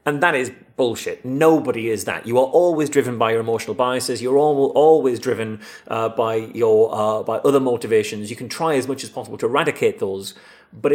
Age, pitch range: 30-49, 115-140 Hz